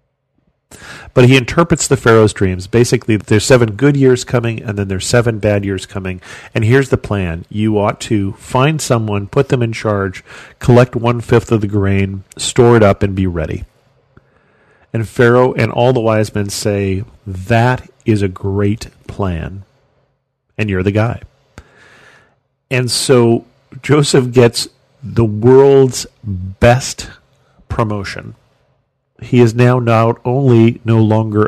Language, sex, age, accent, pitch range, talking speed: English, male, 40-59, American, 100-130 Hz, 145 wpm